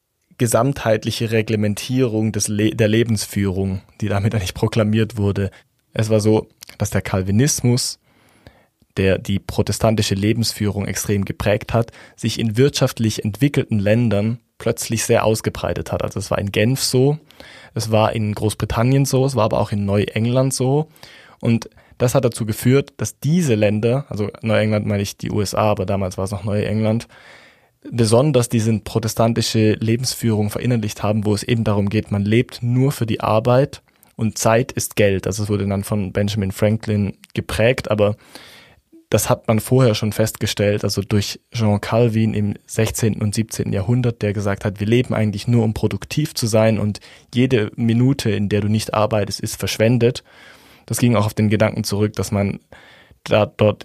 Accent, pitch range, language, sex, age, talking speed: German, 105-115 Hz, German, male, 20-39, 165 wpm